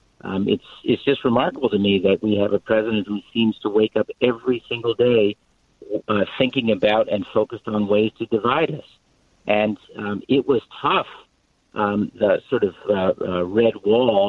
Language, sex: English, male